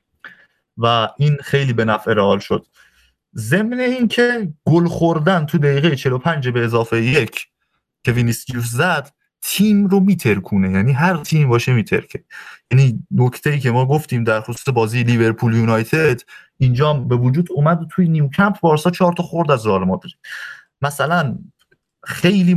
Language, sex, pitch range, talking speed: Persian, male, 130-180 Hz, 140 wpm